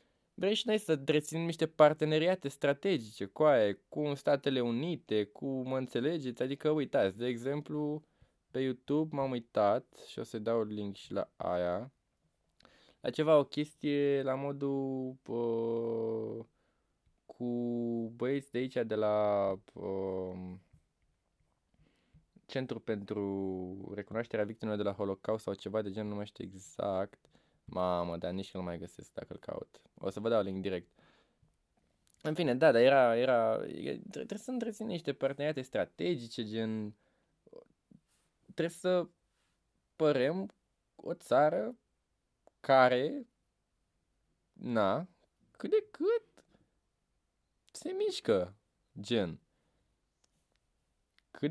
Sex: male